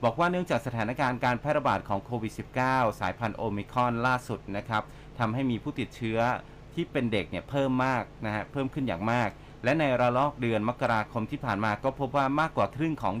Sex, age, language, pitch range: male, 30-49, Thai, 110-140 Hz